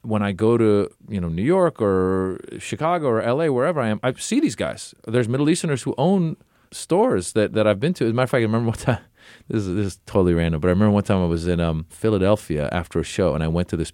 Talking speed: 265 wpm